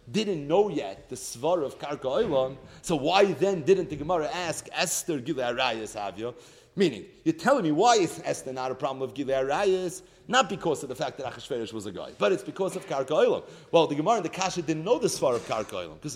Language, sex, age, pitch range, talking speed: English, male, 40-59, 140-185 Hz, 225 wpm